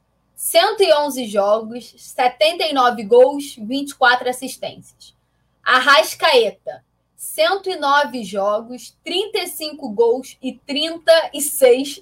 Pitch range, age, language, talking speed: 225-300 Hz, 20-39, Portuguese, 65 wpm